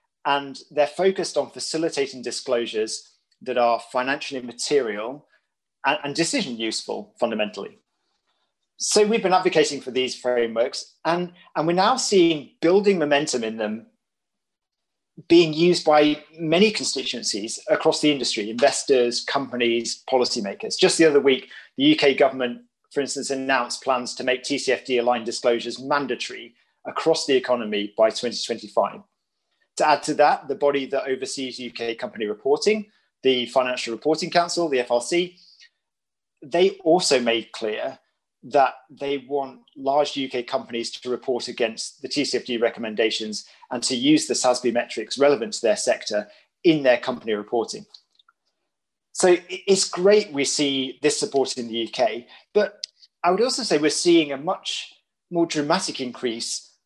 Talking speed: 135 wpm